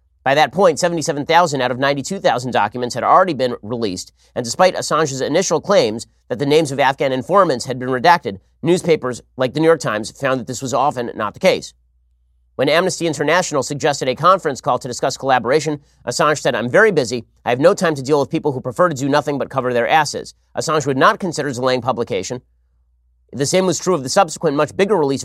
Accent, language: American, English